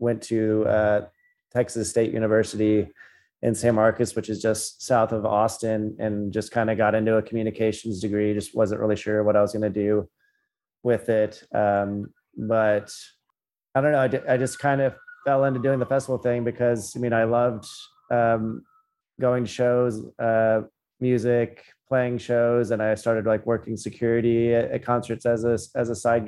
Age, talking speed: 30-49, 180 wpm